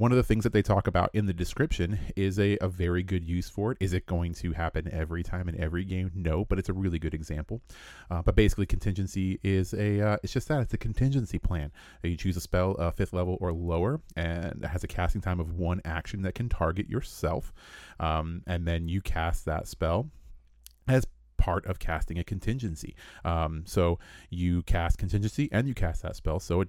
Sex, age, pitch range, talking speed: male, 30-49, 85-100 Hz, 220 wpm